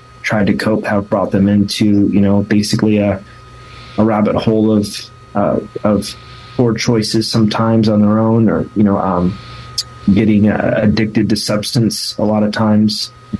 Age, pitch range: 30-49, 105-125 Hz